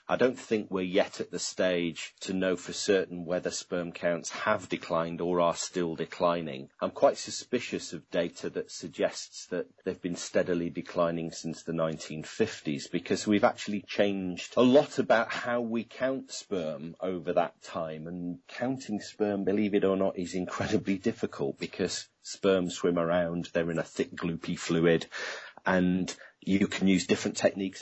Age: 40-59